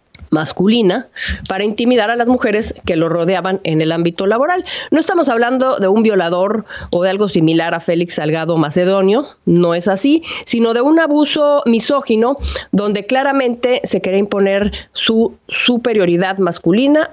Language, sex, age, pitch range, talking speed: Spanish, female, 40-59, 180-255 Hz, 150 wpm